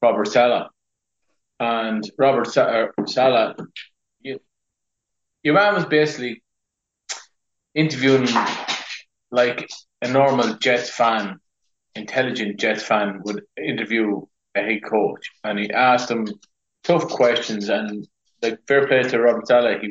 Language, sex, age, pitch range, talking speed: English, male, 30-49, 105-120 Hz, 115 wpm